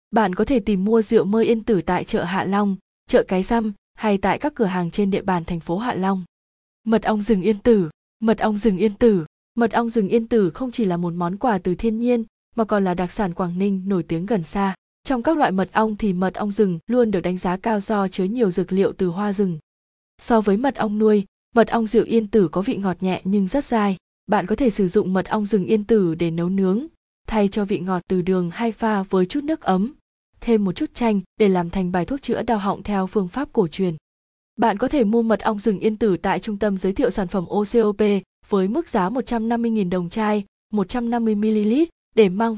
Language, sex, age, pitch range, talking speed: Vietnamese, female, 20-39, 190-230 Hz, 240 wpm